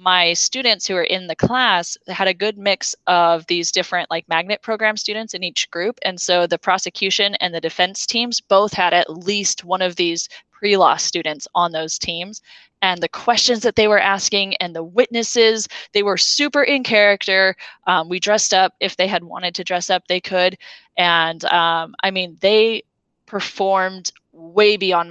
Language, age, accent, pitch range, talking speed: English, 20-39, American, 175-210 Hz, 185 wpm